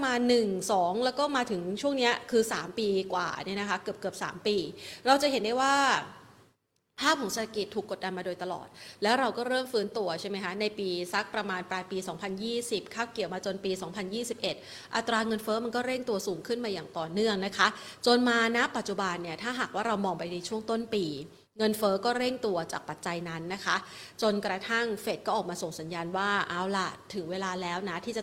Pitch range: 190-235 Hz